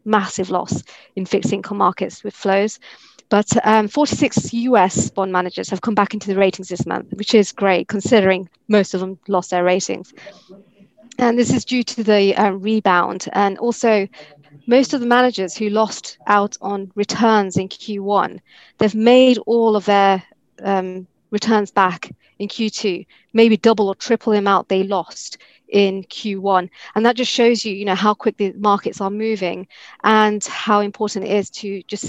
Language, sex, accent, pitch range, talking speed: English, female, British, 190-220 Hz, 175 wpm